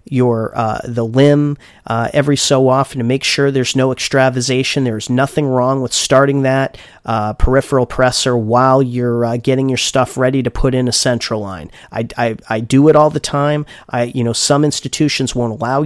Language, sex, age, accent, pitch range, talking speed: English, male, 40-59, American, 120-145 Hz, 195 wpm